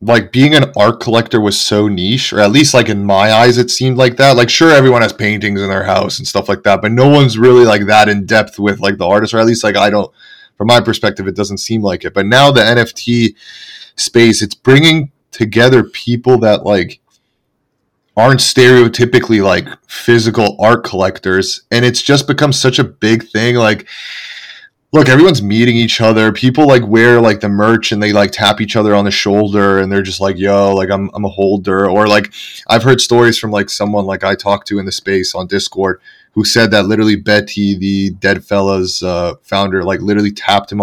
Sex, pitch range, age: male, 100-125 Hz, 30-49